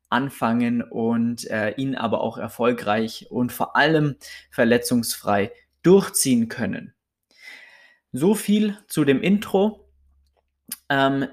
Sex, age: male, 20-39